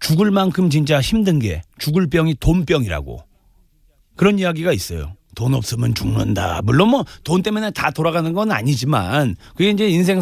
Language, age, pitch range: Korean, 40-59, 115-190 Hz